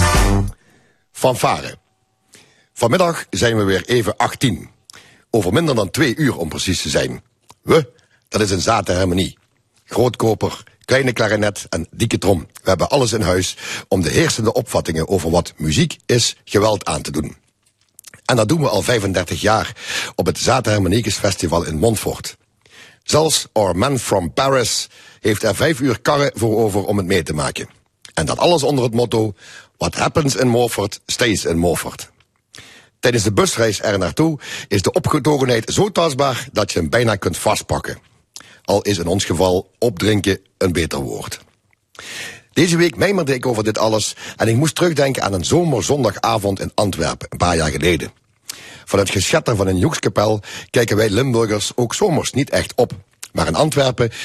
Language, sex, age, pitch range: Dutch, male, 60-79, 95-125 Hz